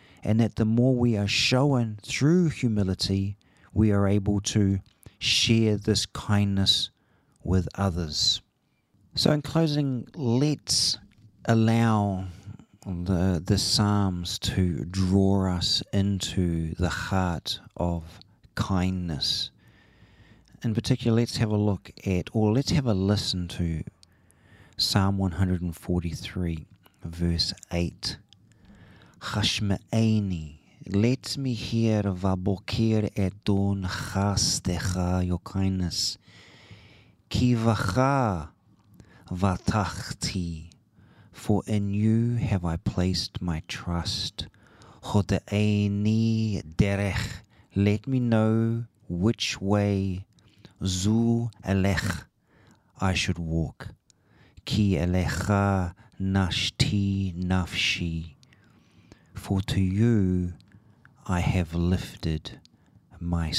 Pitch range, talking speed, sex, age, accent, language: 90-110 Hz, 90 wpm, male, 40-59, Australian, English